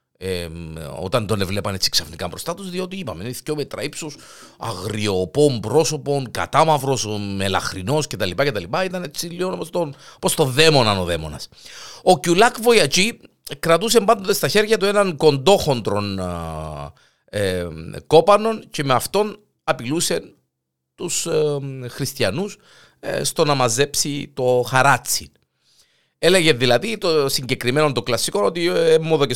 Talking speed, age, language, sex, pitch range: 120 wpm, 50-69, Greek, male, 105-165 Hz